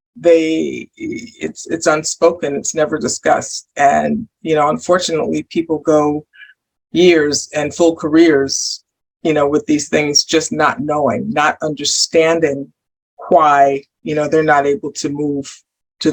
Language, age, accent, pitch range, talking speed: English, 50-69, American, 150-200 Hz, 135 wpm